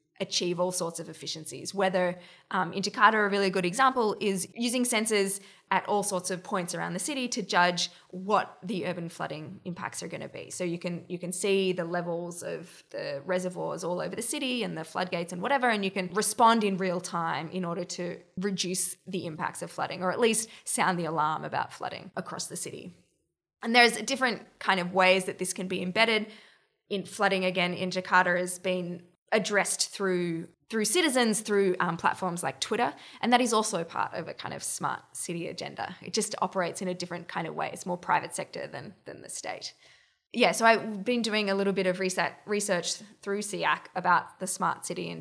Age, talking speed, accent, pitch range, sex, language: 20-39, 205 wpm, Australian, 180-220 Hz, female, English